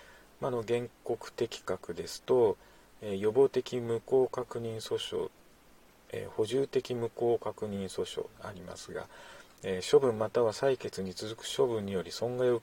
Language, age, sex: Japanese, 40-59, male